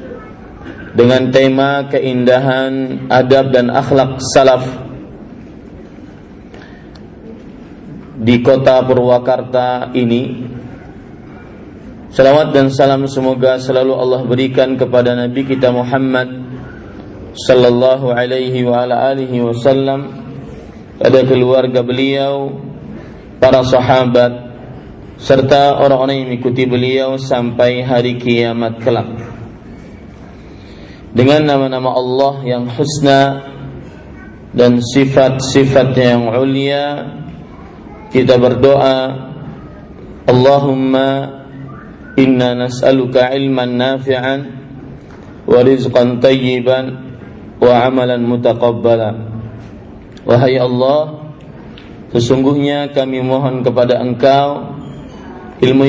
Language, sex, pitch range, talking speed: Indonesian, male, 125-135 Hz, 75 wpm